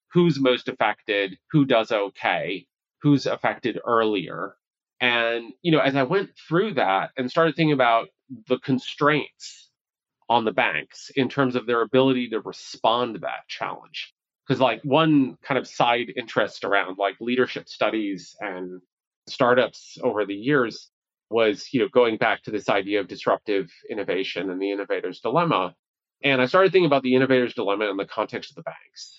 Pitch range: 120-160 Hz